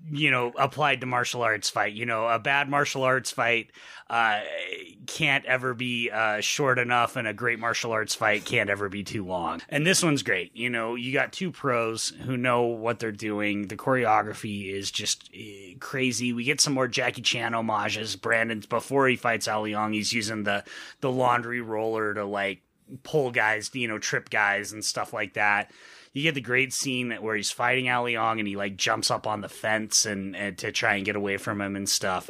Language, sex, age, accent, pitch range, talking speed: English, male, 30-49, American, 105-135 Hz, 205 wpm